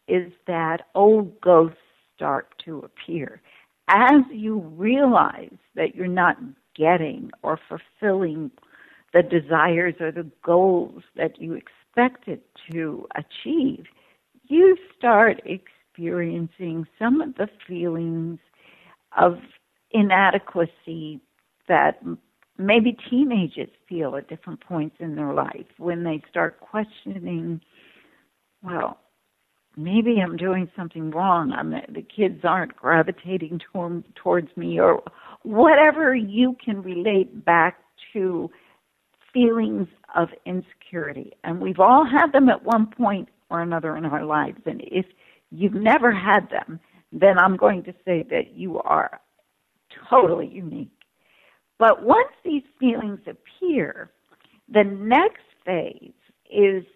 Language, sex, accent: English, female, American